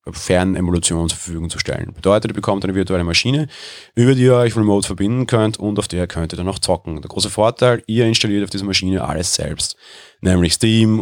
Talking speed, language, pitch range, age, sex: 210 wpm, German, 90-110 Hz, 30-49, male